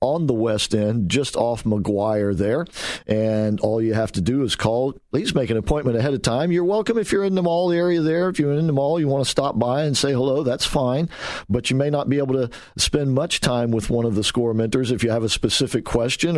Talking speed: 255 wpm